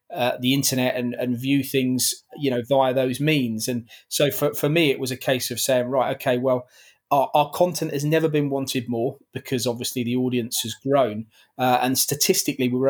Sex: male